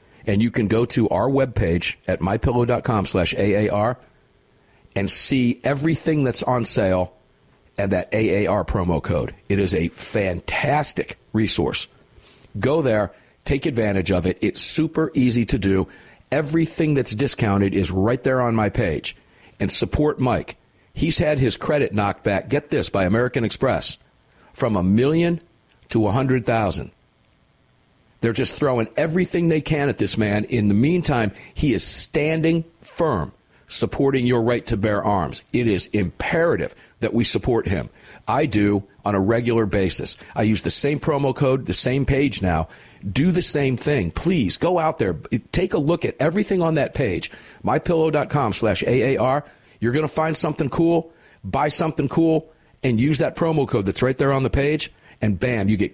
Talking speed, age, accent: 165 wpm, 50-69, American